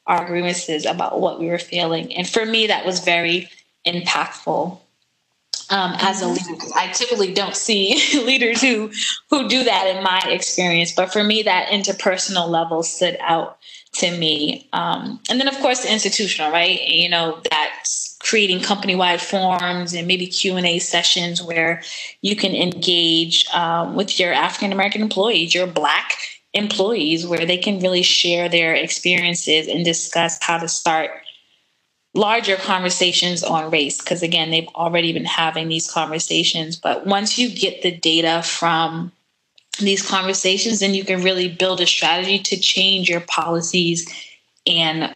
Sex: female